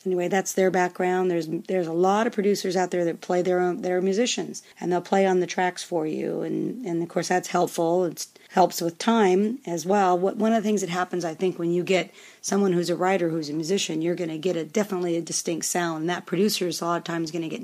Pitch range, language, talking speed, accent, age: 170-195 Hz, English, 260 wpm, American, 40-59